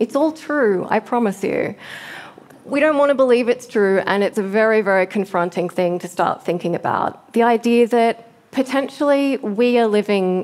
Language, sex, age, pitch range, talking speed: English, female, 20-39, 185-230 Hz, 180 wpm